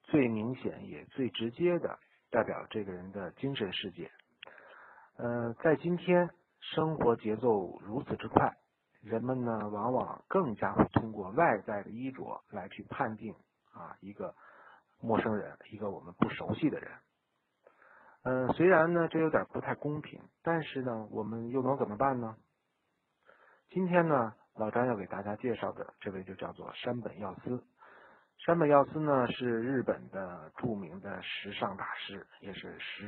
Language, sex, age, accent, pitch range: Chinese, male, 50-69, native, 110-145 Hz